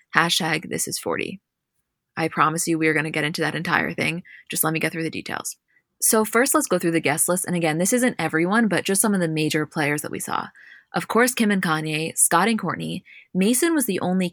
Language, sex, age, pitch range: English, female, 20-39, 160-195 Hz